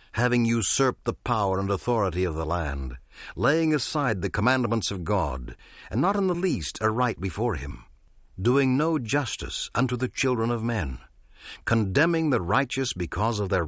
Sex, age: male, 60-79